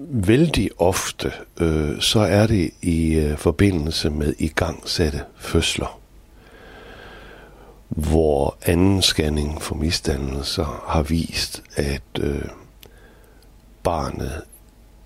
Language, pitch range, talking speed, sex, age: Danish, 80-100 Hz, 90 wpm, male, 60-79